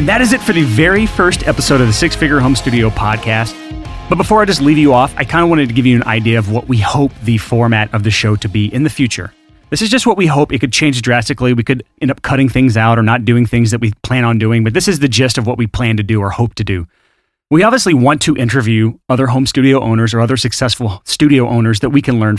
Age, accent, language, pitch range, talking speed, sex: 30-49, American, English, 115-155 Hz, 280 wpm, male